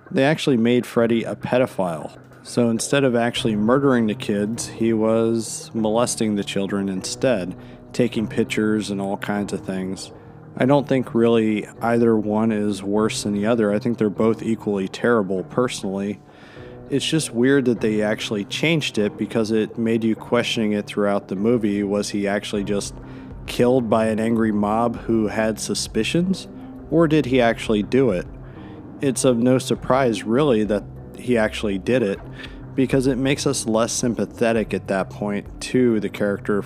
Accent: American